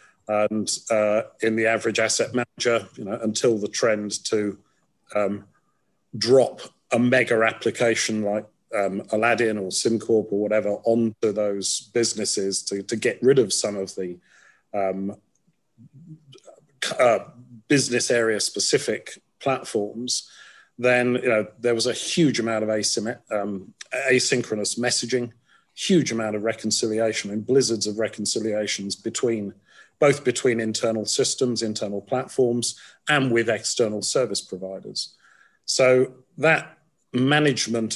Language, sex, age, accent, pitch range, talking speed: English, male, 40-59, British, 105-125 Hz, 120 wpm